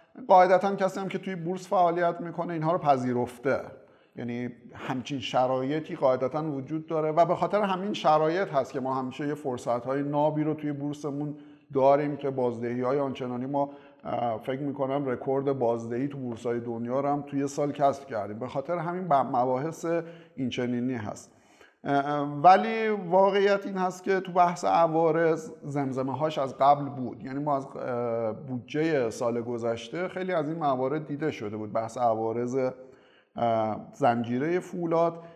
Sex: male